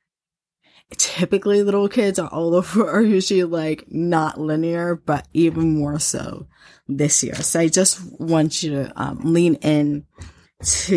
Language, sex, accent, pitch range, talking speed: English, female, American, 150-180 Hz, 150 wpm